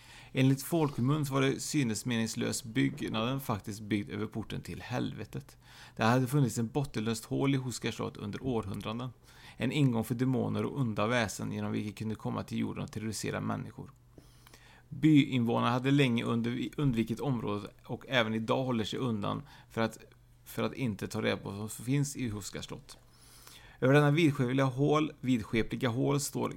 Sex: male